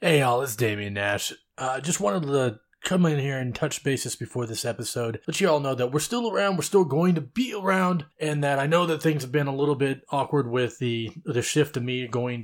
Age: 20-39